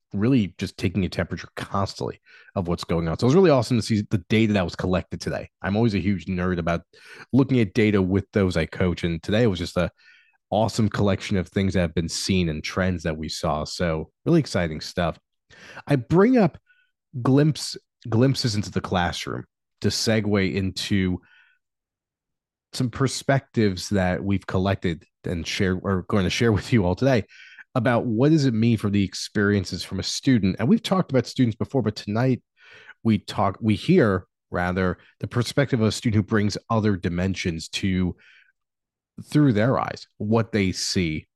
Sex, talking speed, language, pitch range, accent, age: male, 180 wpm, English, 95-120 Hz, American, 30-49